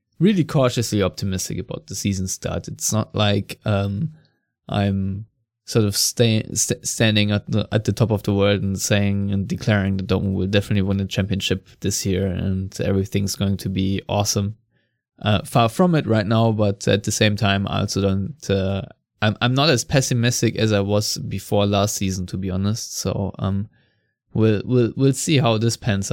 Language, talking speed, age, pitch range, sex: English, 185 wpm, 20-39, 100-120 Hz, male